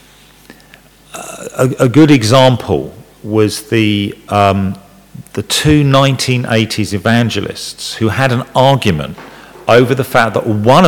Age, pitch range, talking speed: 50-69, 105-135 Hz, 100 wpm